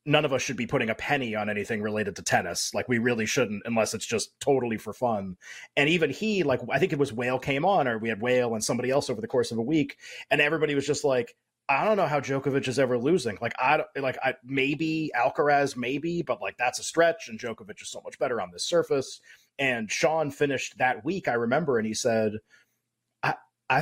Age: 30-49